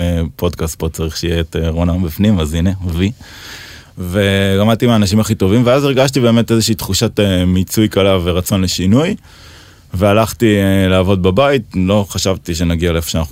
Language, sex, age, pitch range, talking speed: English, male, 20-39, 85-105 Hz, 125 wpm